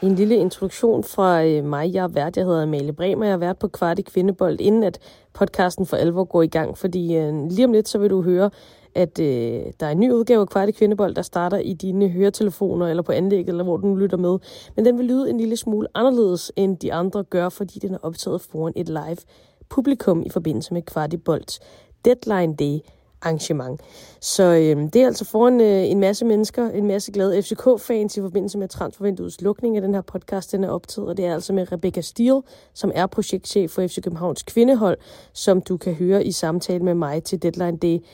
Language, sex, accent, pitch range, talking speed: Danish, female, native, 175-215 Hz, 210 wpm